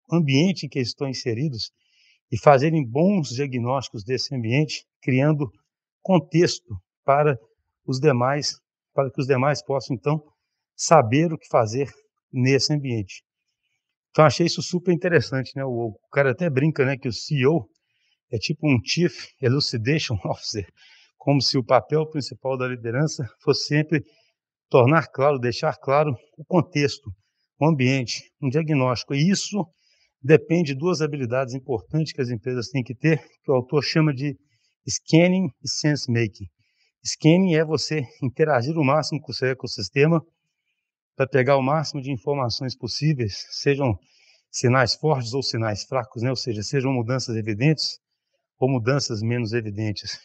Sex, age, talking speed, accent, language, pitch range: male, 60-79, 145 wpm, Brazilian, Portuguese, 125-155 Hz